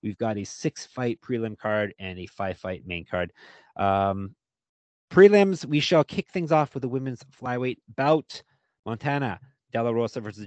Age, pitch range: 30-49, 105-135 Hz